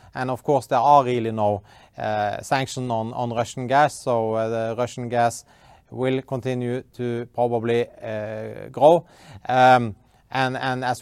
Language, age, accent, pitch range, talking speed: English, 30-49, Norwegian, 110-130 Hz, 145 wpm